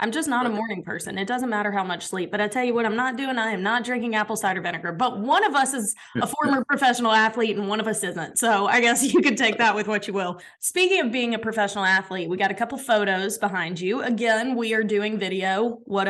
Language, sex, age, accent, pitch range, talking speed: English, female, 20-39, American, 200-245 Hz, 265 wpm